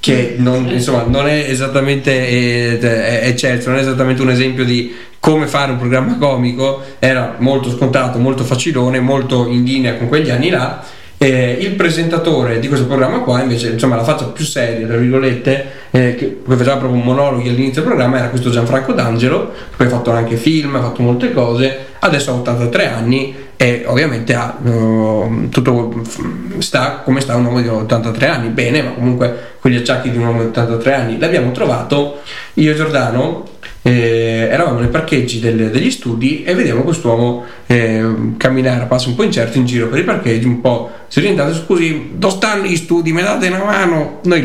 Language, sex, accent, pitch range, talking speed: Italian, male, native, 120-135 Hz, 190 wpm